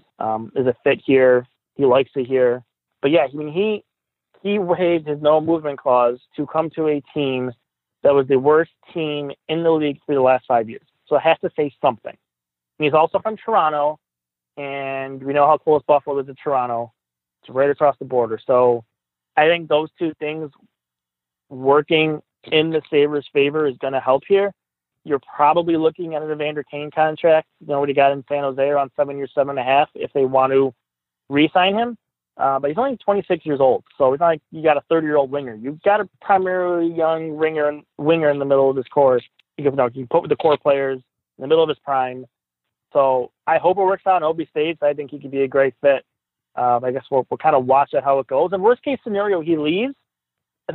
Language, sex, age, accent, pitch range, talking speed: English, male, 30-49, American, 135-160 Hz, 220 wpm